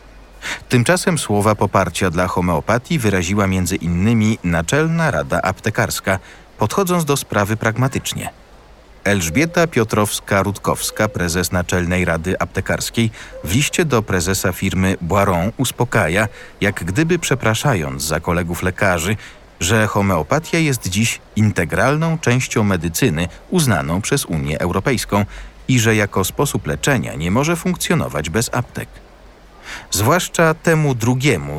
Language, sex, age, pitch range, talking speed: Polish, male, 40-59, 90-120 Hz, 110 wpm